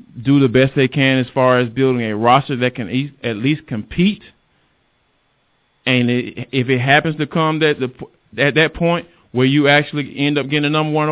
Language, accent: English, American